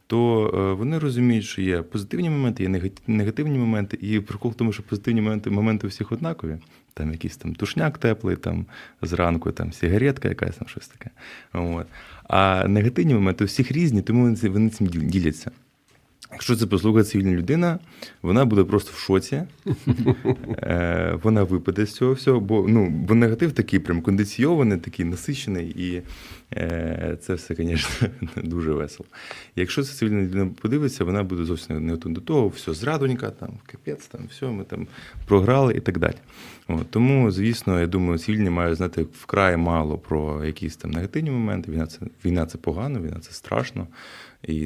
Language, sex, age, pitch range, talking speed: Ukrainian, male, 20-39, 85-115 Hz, 165 wpm